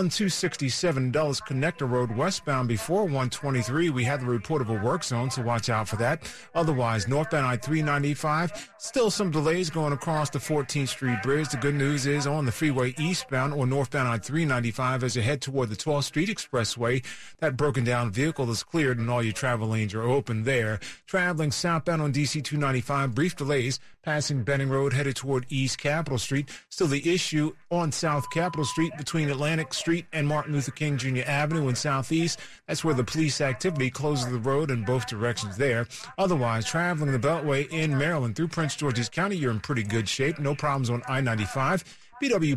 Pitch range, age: 125-155 Hz, 40-59